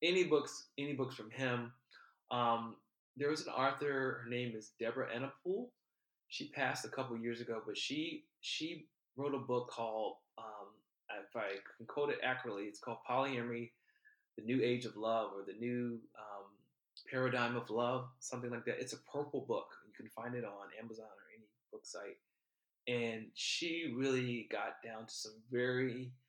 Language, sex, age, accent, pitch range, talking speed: English, male, 20-39, American, 115-140 Hz, 175 wpm